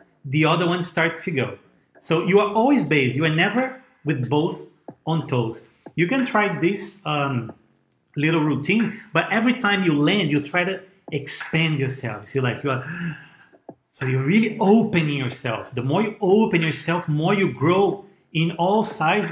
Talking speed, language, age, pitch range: 175 wpm, English, 30-49, 150-190 Hz